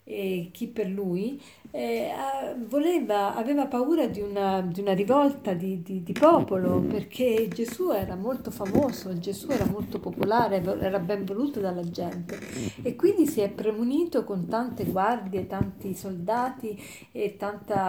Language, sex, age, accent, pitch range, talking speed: Italian, female, 50-69, native, 190-245 Hz, 145 wpm